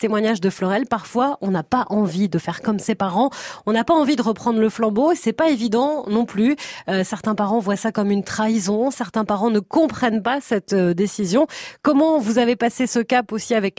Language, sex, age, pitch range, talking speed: French, female, 30-49, 205-260 Hz, 220 wpm